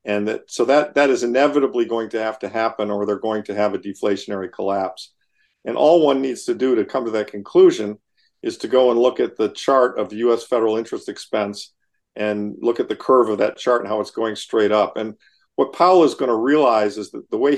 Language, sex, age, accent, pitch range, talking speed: English, male, 50-69, American, 105-135 Hz, 240 wpm